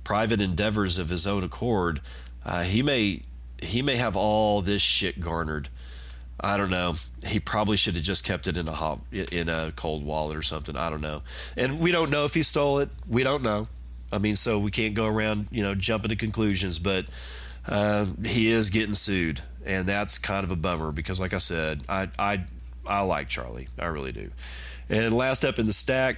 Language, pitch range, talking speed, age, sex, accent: English, 70-110 Hz, 210 wpm, 40-59, male, American